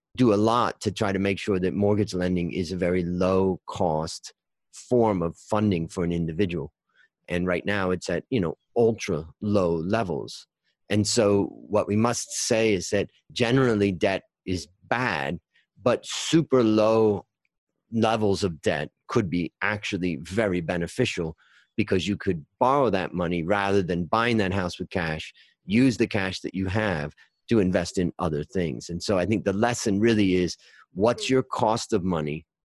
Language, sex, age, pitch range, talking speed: English, male, 40-59, 90-110 Hz, 165 wpm